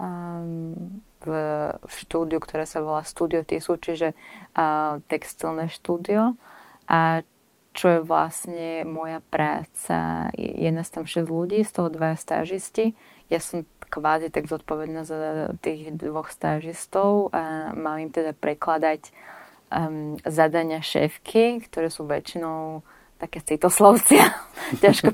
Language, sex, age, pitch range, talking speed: Slovak, female, 20-39, 155-175 Hz, 110 wpm